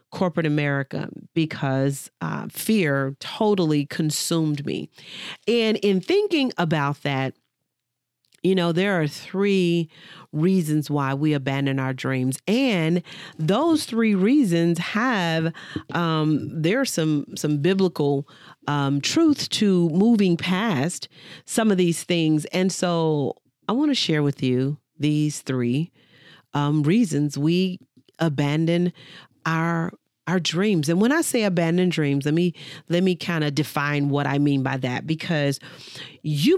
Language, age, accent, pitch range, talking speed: English, 40-59, American, 150-195 Hz, 135 wpm